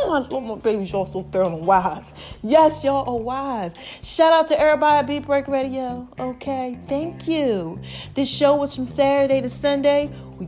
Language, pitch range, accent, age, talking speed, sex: English, 260-335 Hz, American, 30-49, 185 wpm, female